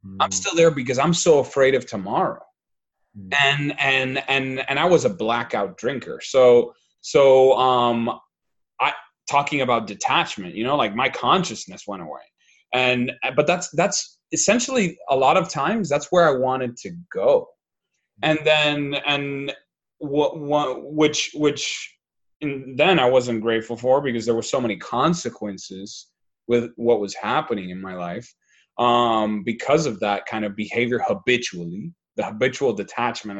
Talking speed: 150 wpm